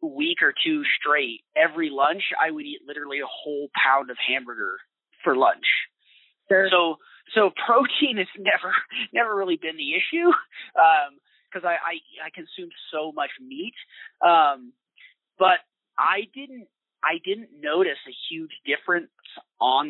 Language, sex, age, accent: English, male, 30-49, American